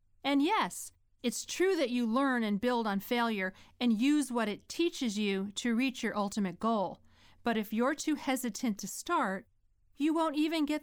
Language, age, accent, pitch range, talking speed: English, 40-59, American, 195-265 Hz, 185 wpm